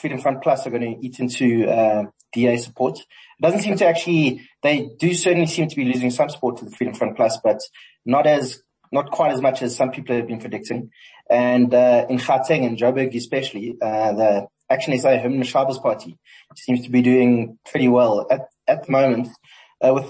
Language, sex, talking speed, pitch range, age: English, male, 205 wpm, 125-145 Hz, 30-49